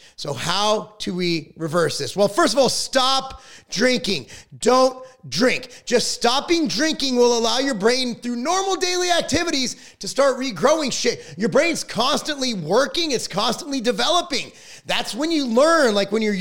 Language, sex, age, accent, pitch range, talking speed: English, male, 30-49, American, 190-255 Hz, 155 wpm